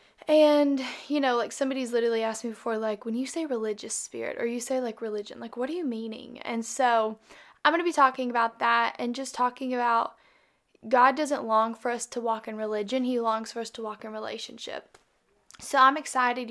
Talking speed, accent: 210 wpm, American